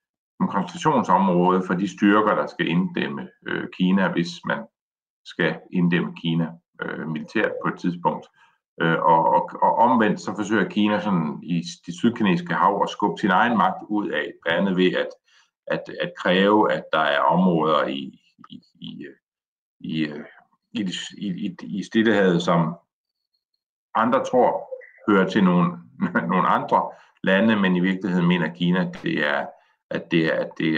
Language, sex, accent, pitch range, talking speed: Danish, male, native, 85-130 Hz, 155 wpm